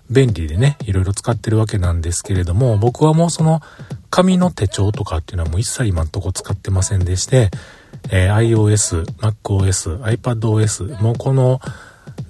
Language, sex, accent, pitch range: Japanese, male, native, 100-140 Hz